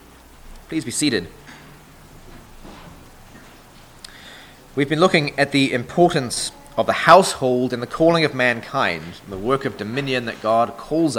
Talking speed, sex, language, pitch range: 135 wpm, male, English, 115-145 Hz